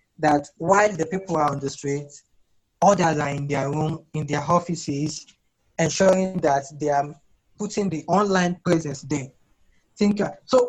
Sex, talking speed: male, 155 wpm